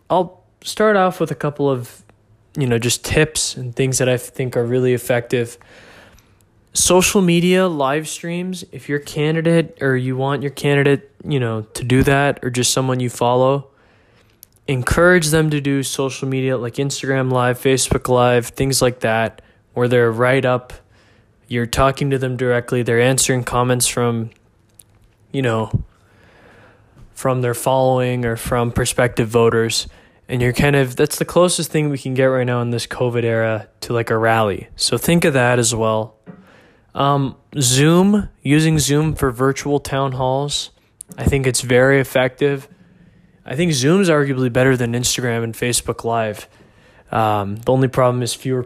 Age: 20-39